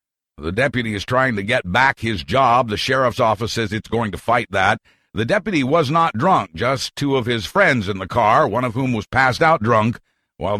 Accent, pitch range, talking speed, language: American, 115-160 Hz, 220 wpm, English